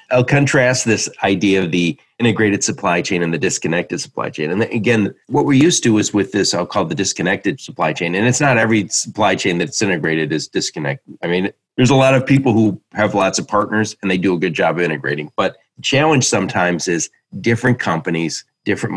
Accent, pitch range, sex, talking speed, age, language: American, 95-120 Hz, male, 210 wpm, 40-59, English